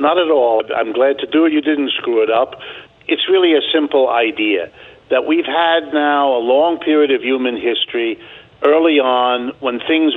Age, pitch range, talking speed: 50-69, 130-170 Hz, 190 wpm